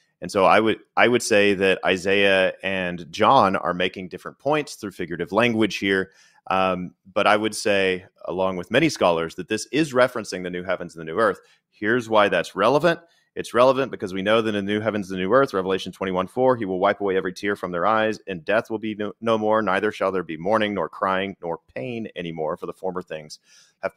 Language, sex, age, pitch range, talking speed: English, male, 30-49, 95-120 Hz, 225 wpm